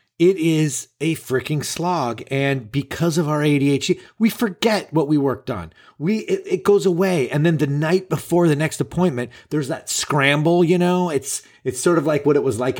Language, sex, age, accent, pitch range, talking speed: English, male, 30-49, American, 125-160 Hz, 200 wpm